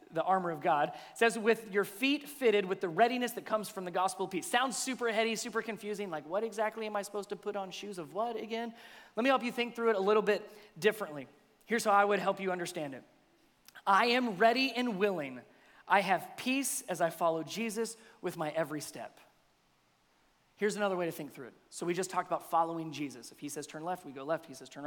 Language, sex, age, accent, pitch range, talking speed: English, male, 30-49, American, 185-260 Hz, 230 wpm